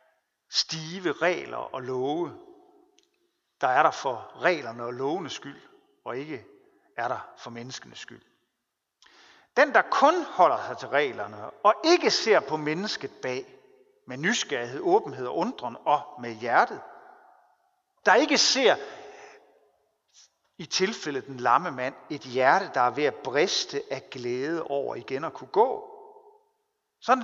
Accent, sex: native, male